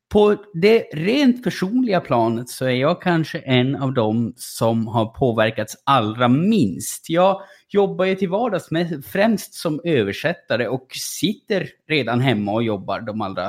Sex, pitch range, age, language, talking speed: male, 135-185 Hz, 20-39, Swedish, 145 wpm